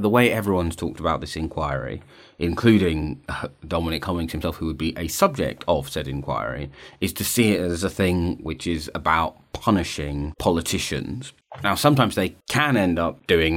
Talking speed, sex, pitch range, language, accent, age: 170 wpm, male, 80-90 Hz, English, British, 30-49